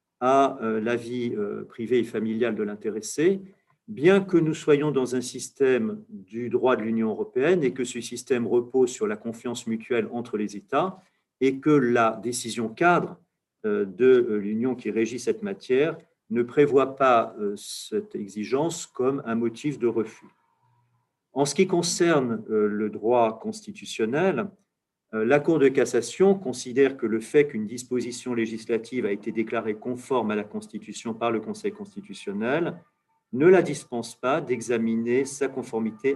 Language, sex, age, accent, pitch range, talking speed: French, male, 50-69, French, 115-170 Hz, 150 wpm